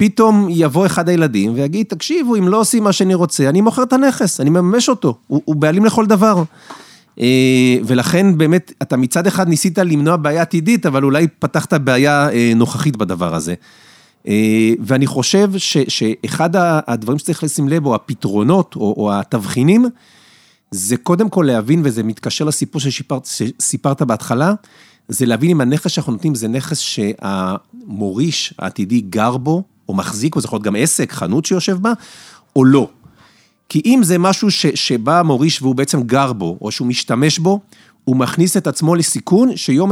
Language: Hebrew